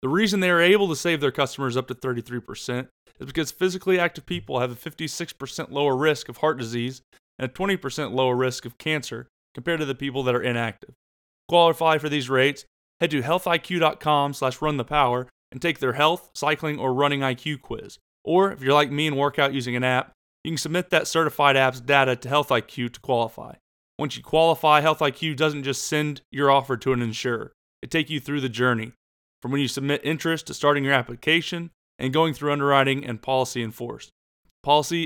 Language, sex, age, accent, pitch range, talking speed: English, male, 30-49, American, 125-155 Hz, 200 wpm